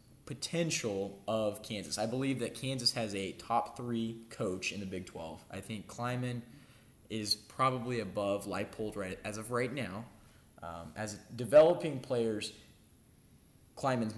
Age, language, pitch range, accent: 20-39, English, 100-125 Hz, American